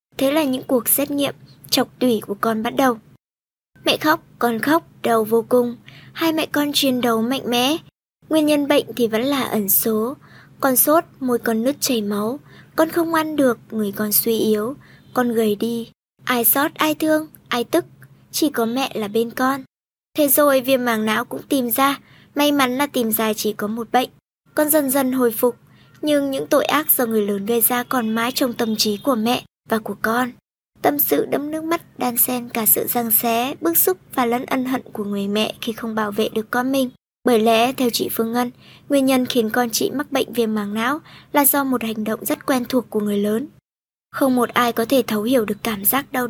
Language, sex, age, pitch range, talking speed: Vietnamese, male, 20-39, 225-270 Hz, 220 wpm